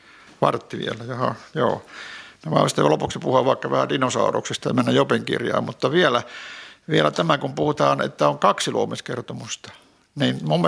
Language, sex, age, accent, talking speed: Finnish, male, 60-79, native, 140 wpm